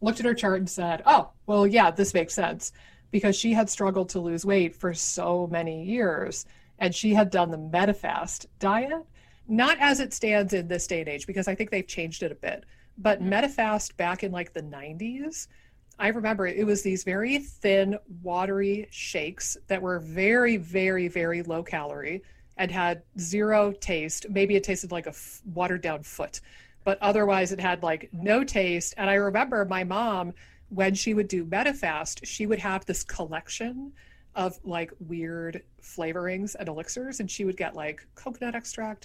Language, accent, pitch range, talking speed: English, American, 175-210 Hz, 180 wpm